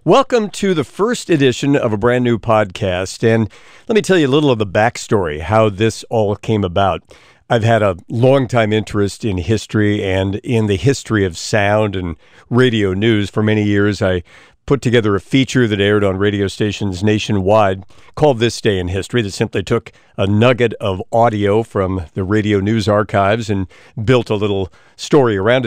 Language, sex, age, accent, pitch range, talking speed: English, male, 50-69, American, 100-125 Hz, 180 wpm